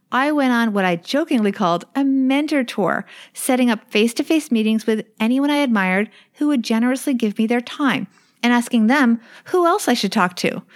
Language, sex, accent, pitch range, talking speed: English, female, American, 195-255 Hz, 190 wpm